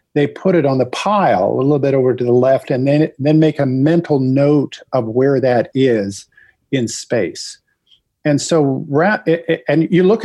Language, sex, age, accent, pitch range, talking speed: English, male, 50-69, American, 130-160 Hz, 180 wpm